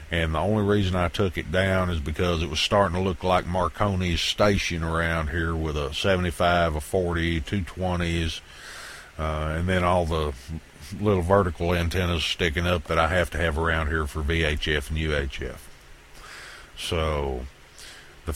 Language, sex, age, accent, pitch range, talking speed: English, male, 60-79, American, 75-100 Hz, 160 wpm